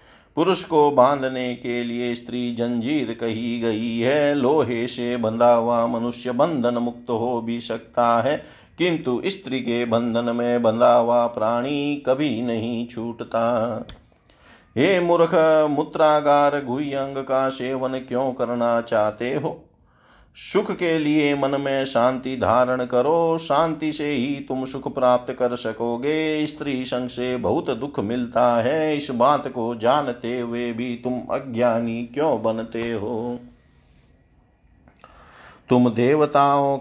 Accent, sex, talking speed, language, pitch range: native, male, 125 wpm, Hindi, 120-145 Hz